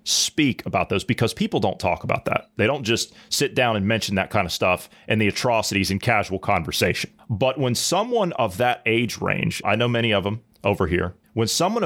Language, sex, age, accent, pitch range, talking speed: English, male, 30-49, American, 95-120 Hz, 215 wpm